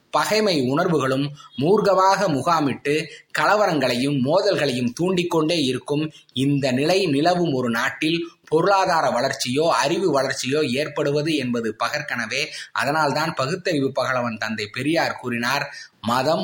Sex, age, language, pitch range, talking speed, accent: male, 20-39, Tamil, 125-155 Hz, 100 wpm, native